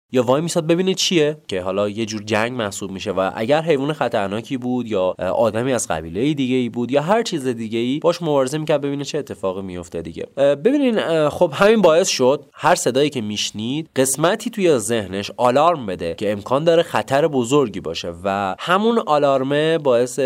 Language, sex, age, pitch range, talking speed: Persian, male, 30-49, 105-155 Hz, 180 wpm